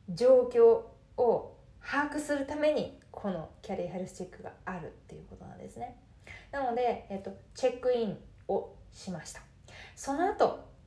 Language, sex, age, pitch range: Japanese, female, 20-39, 195-265 Hz